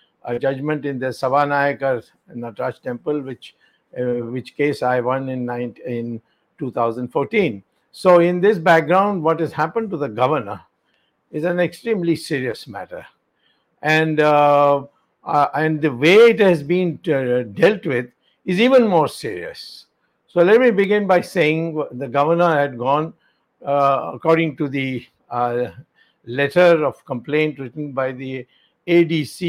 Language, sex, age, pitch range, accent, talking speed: English, male, 60-79, 130-165 Hz, Indian, 140 wpm